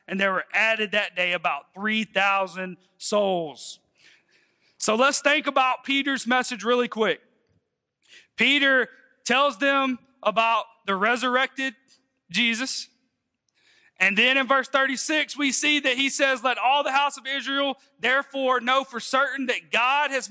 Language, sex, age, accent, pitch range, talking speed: English, male, 40-59, American, 230-275 Hz, 140 wpm